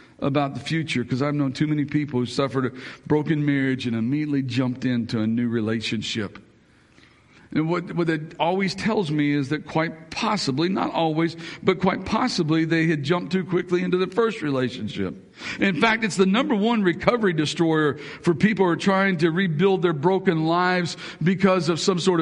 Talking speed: 185 wpm